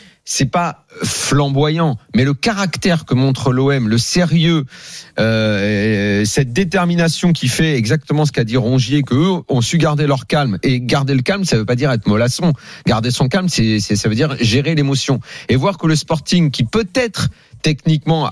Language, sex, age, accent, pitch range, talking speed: French, male, 40-59, French, 115-160 Hz, 185 wpm